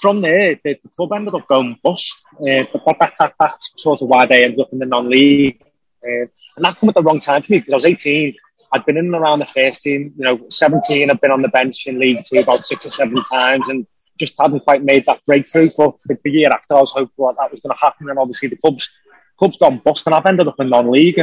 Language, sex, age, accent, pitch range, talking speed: English, male, 20-39, British, 135-170 Hz, 270 wpm